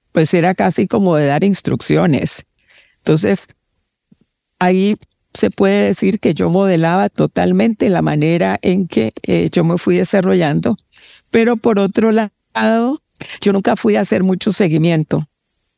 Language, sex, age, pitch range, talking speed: Spanish, female, 50-69, 155-200 Hz, 135 wpm